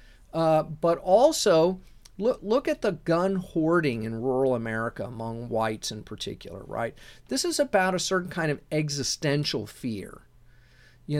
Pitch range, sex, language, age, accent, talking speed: 130-185 Hz, male, English, 40-59, American, 145 wpm